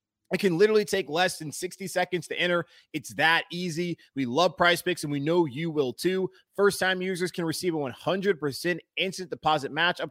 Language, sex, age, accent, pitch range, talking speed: English, male, 30-49, American, 145-190 Hz, 200 wpm